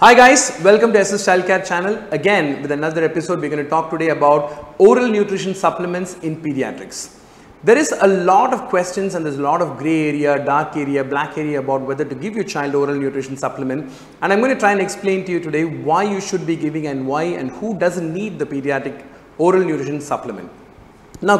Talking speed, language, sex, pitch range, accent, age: 215 wpm, Tamil, male, 145-190 Hz, native, 40-59